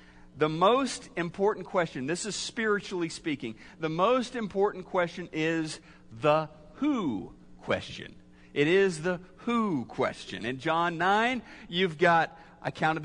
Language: English